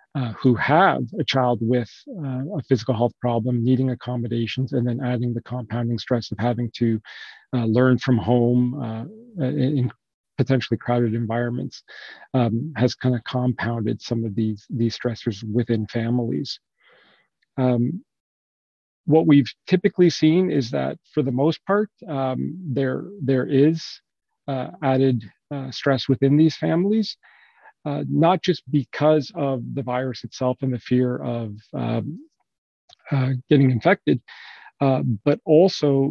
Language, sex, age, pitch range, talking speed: English, male, 40-59, 120-150 Hz, 140 wpm